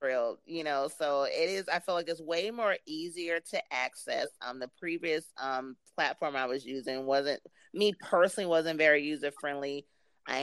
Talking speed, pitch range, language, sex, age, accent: 175 wpm, 140-175 Hz, English, female, 30-49, American